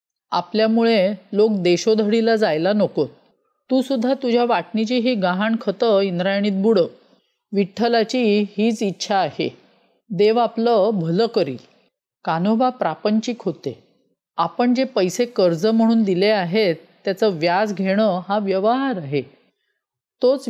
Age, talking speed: 40-59, 115 wpm